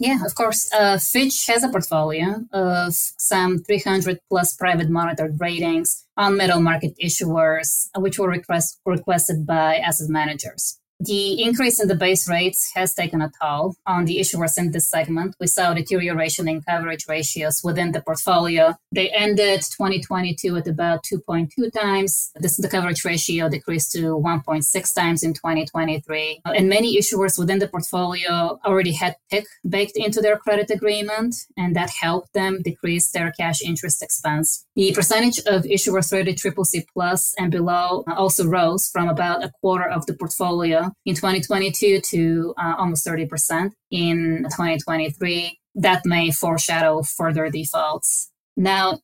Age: 20-39